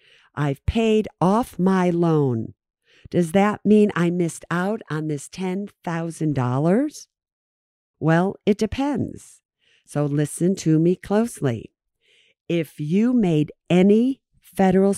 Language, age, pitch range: English, 50-69, 145-205 Hz